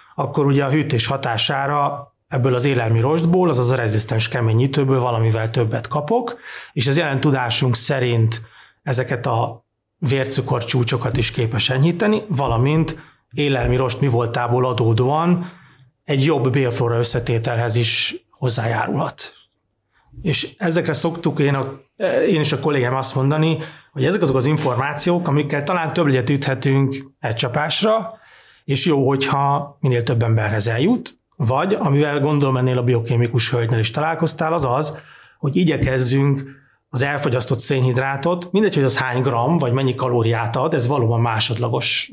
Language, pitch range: Hungarian, 125-150 Hz